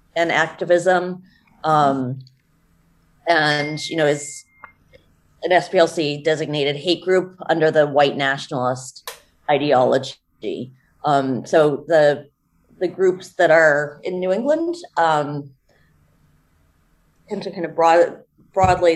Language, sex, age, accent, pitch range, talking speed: English, female, 30-49, American, 140-170 Hz, 100 wpm